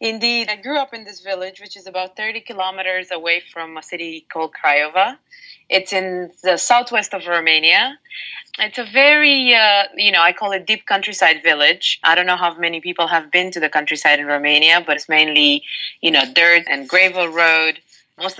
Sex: female